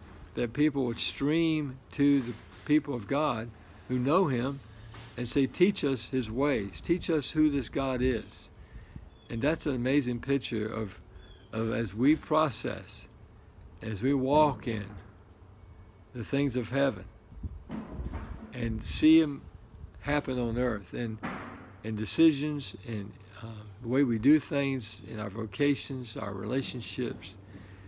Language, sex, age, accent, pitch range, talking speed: English, male, 50-69, American, 105-135 Hz, 135 wpm